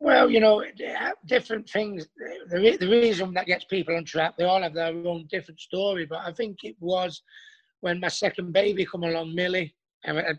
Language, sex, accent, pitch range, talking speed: English, male, British, 170-205 Hz, 190 wpm